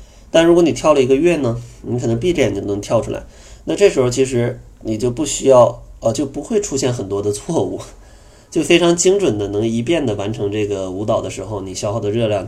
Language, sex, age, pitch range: Chinese, male, 20-39, 105-135 Hz